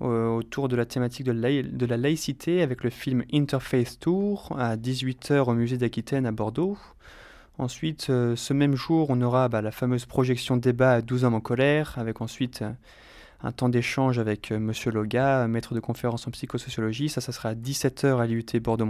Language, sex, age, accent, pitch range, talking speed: French, male, 20-39, French, 115-140 Hz, 185 wpm